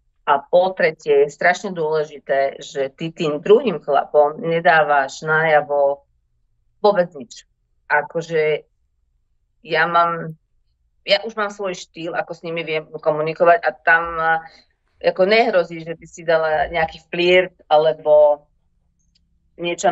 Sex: female